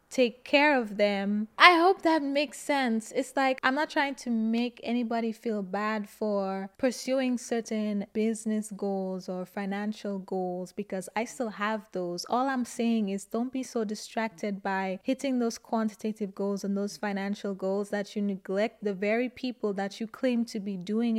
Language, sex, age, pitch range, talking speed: English, female, 20-39, 200-235 Hz, 175 wpm